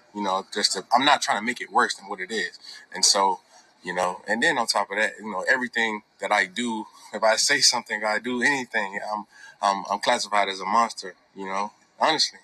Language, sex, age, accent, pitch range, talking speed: English, male, 20-39, American, 105-120 Hz, 235 wpm